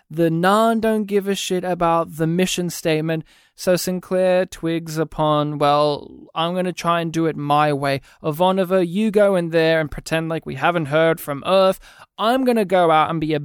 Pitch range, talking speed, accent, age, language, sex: 150-205 Hz, 200 wpm, Australian, 20-39, English, male